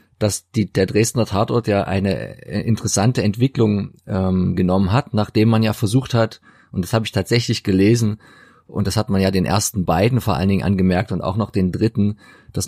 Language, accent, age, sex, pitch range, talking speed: German, German, 30-49, male, 100-120 Hz, 195 wpm